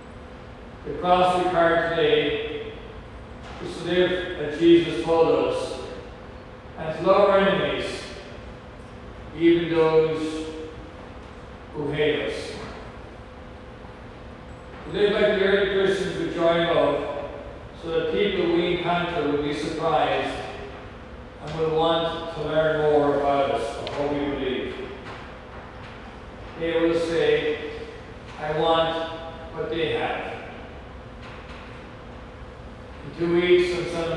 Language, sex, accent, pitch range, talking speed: English, male, American, 150-175 Hz, 110 wpm